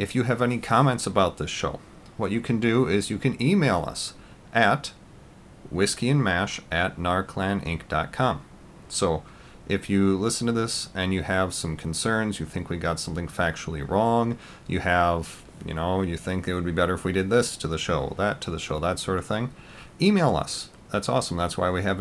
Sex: male